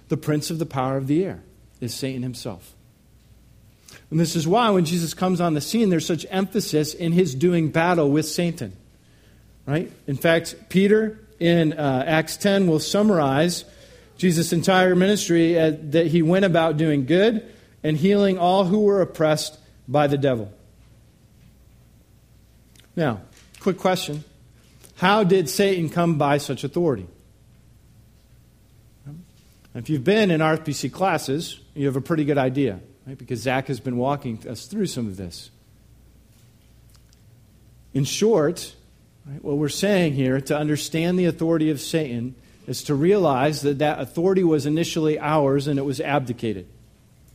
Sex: male